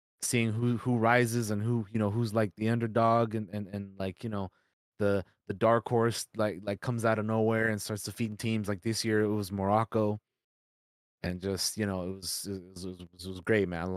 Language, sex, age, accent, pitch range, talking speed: English, male, 20-39, American, 85-110 Hz, 225 wpm